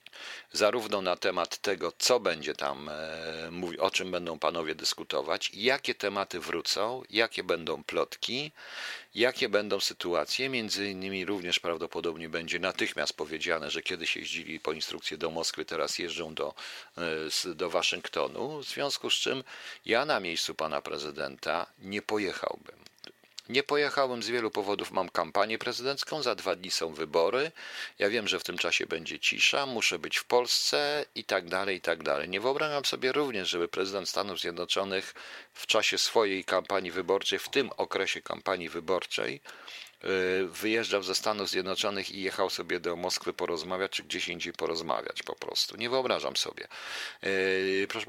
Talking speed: 150 wpm